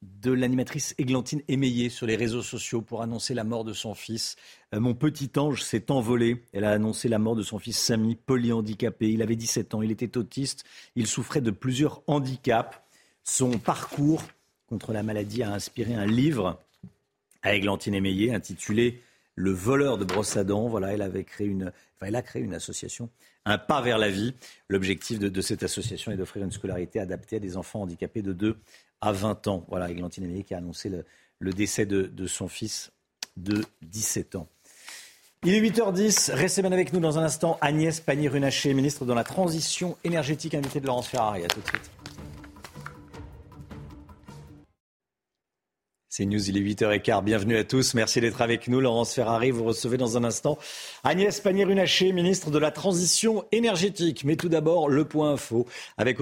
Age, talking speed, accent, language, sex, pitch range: 50-69, 185 wpm, French, French, male, 105-140 Hz